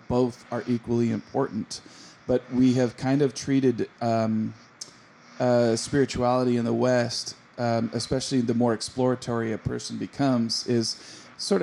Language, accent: English, American